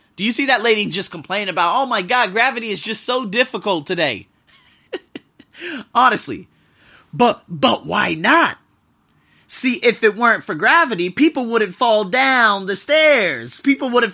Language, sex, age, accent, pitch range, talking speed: English, male, 30-49, American, 180-260 Hz, 155 wpm